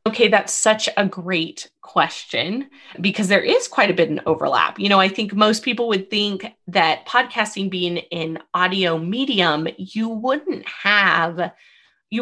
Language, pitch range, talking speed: English, 180-225 Hz, 155 wpm